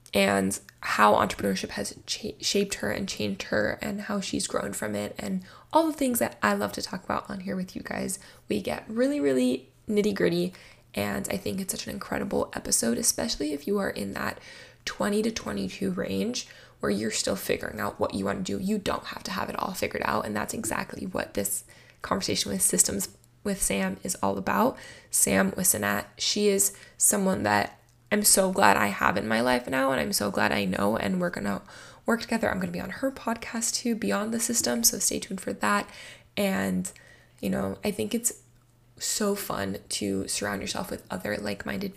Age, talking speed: 10-29, 200 wpm